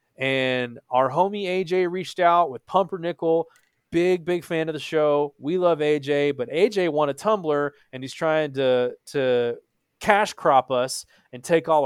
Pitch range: 130-165 Hz